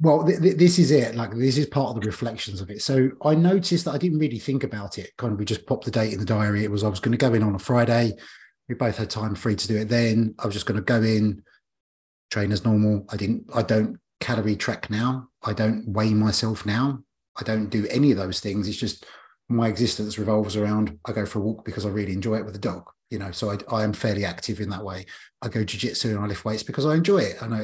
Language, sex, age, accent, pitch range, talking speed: English, male, 30-49, British, 105-125 Hz, 270 wpm